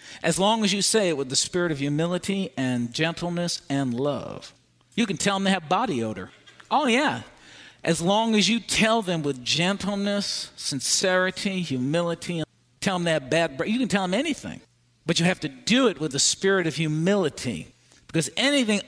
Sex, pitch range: male, 145-190 Hz